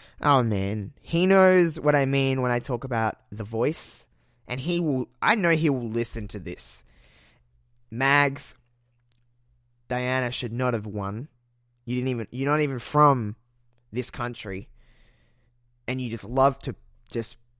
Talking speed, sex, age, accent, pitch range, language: 150 wpm, male, 20-39, Australian, 110-140 Hz, English